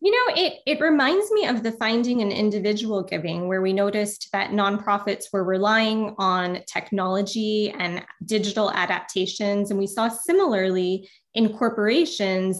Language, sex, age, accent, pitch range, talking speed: English, female, 20-39, American, 195-225 Hz, 145 wpm